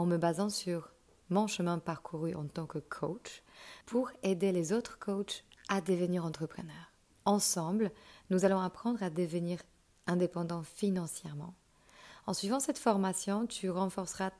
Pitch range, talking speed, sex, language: 165-195 Hz, 140 wpm, female, French